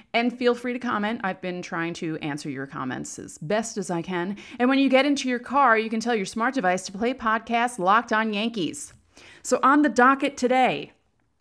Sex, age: female, 30-49